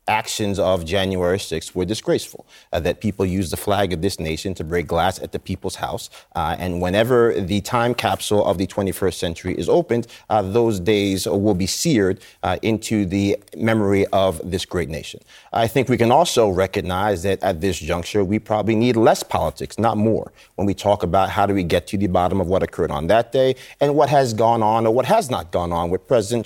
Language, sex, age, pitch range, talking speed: English, male, 30-49, 95-120 Hz, 215 wpm